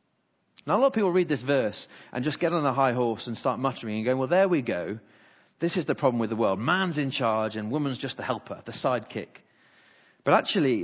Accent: British